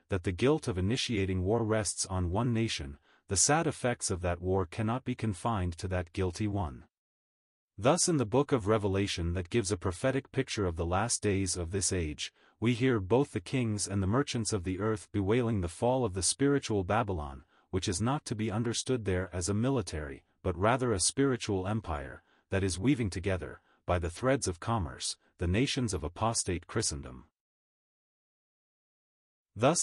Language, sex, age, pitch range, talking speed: English, male, 40-59, 95-120 Hz, 180 wpm